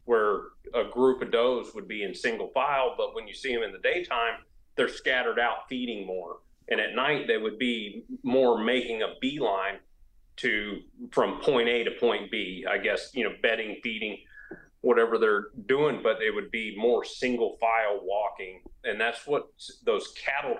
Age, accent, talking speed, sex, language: 30-49, American, 180 wpm, male, English